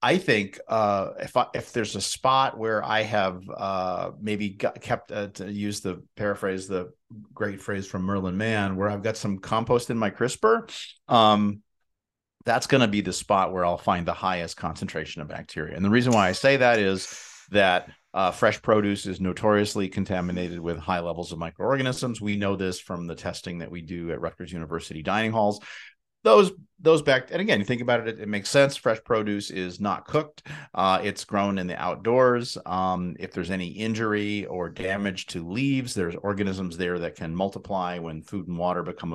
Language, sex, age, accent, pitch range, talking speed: English, male, 40-59, American, 90-110 Hz, 195 wpm